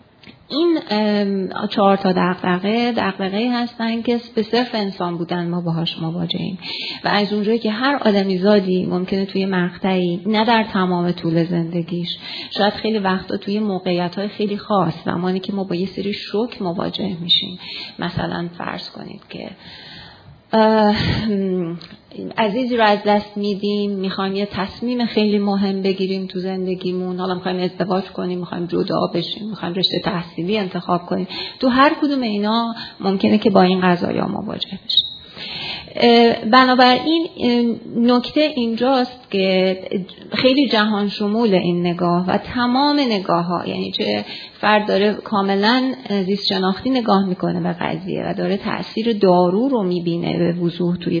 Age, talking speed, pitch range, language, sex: 30-49, 140 wpm, 180-220 Hz, Persian, female